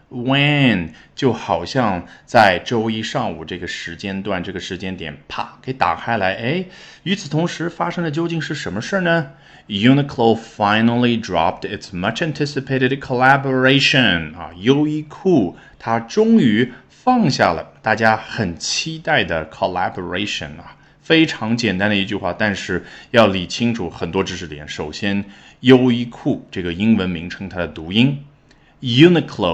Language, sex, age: Chinese, male, 30-49